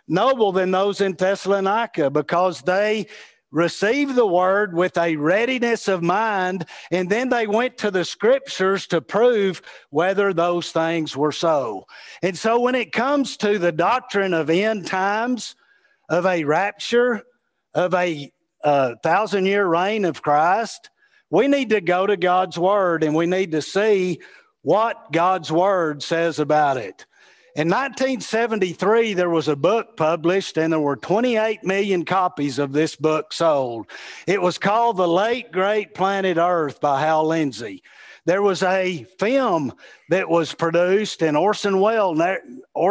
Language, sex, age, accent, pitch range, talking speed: English, male, 50-69, American, 165-210 Hz, 145 wpm